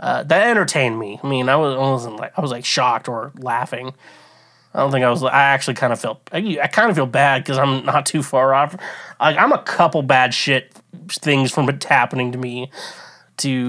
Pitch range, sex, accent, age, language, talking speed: 130-190 Hz, male, American, 20-39, English, 230 wpm